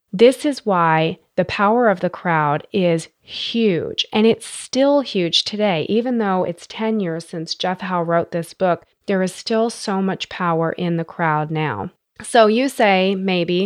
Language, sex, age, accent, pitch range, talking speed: English, female, 30-49, American, 165-205 Hz, 175 wpm